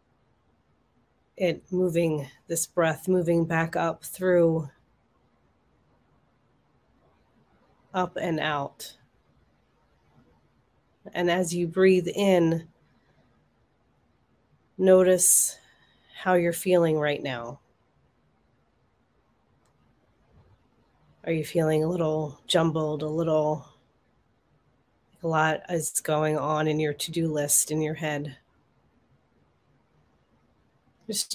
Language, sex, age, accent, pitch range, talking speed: English, female, 30-49, American, 155-180 Hz, 80 wpm